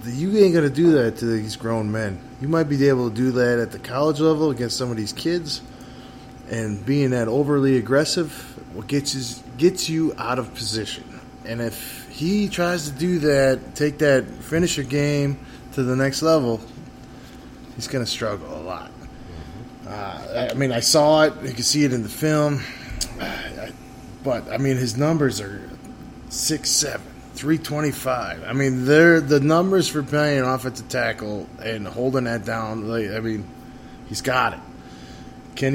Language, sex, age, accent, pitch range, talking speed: English, male, 20-39, American, 120-150 Hz, 170 wpm